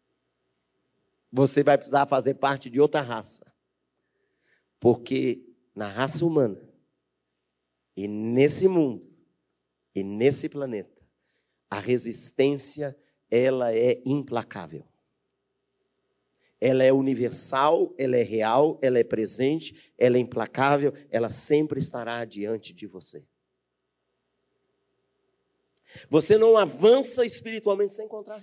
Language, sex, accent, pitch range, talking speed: Portuguese, male, Brazilian, 115-175 Hz, 100 wpm